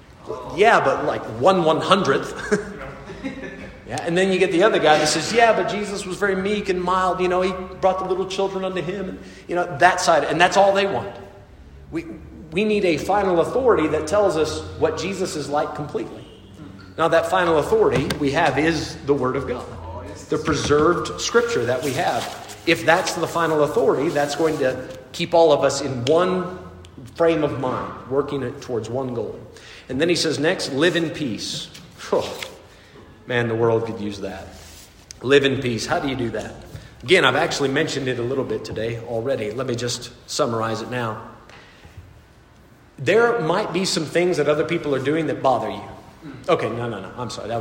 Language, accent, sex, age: English, American, male, 40-59